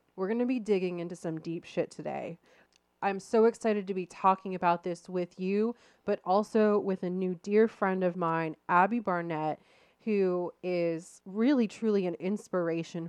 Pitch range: 170-205 Hz